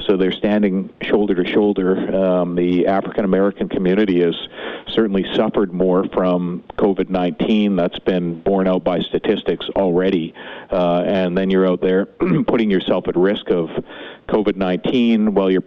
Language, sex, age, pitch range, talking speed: English, male, 50-69, 90-105 Hz, 145 wpm